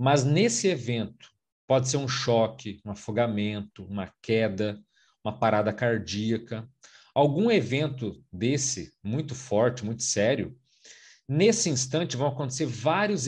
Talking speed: 115 wpm